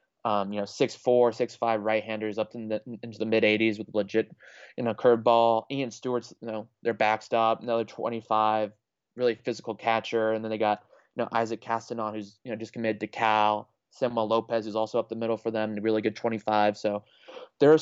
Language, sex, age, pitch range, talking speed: English, male, 20-39, 110-120 Hz, 210 wpm